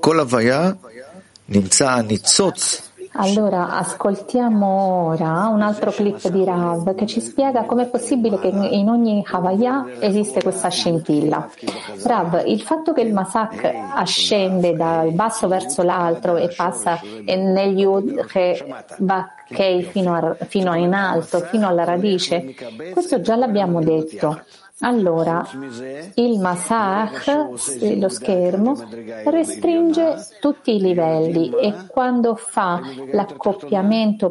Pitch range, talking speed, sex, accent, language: 175-240 Hz, 105 wpm, female, native, Italian